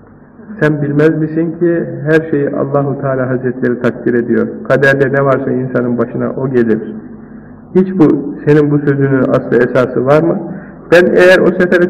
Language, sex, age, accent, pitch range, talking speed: Turkish, male, 50-69, native, 140-205 Hz, 155 wpm